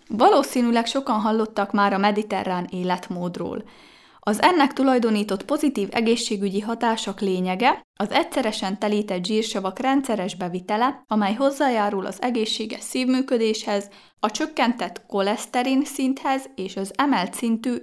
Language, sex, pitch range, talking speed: Hungarian, female, 195-260 Hz, 110 wpm